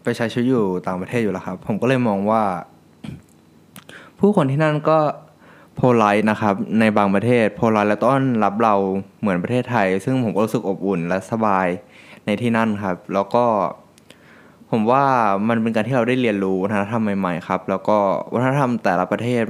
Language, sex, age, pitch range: Thai, male, 20-39, 95-115 Hz